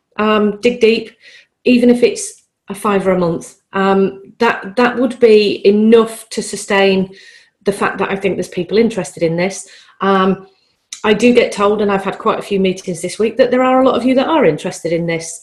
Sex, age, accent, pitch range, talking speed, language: female, 40-59, British, 185-225 Hz, 215 wpm, English